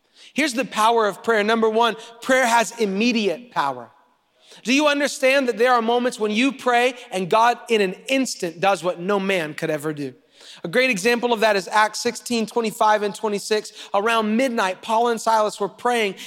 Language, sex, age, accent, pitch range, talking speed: English, male, 30-49, American, 195-245 Hz, 190 wpm